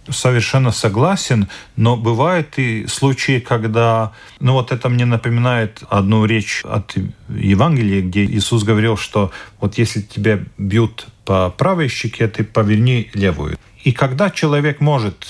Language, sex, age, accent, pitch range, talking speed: Russian, male, 40-59, native, 110-160 Hz, 135 wpm